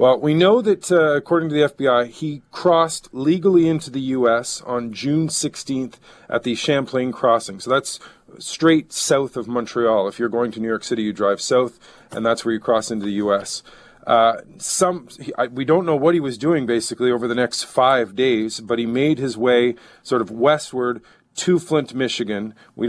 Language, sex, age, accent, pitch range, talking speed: English, male, 40-59, American, 115-140 Hz, 195 wpm